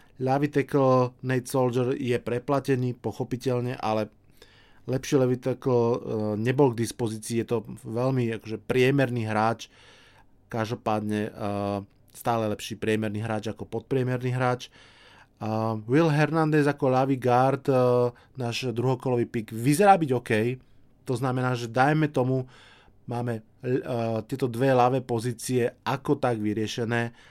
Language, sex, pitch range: Slovak, male, 110-130 Hz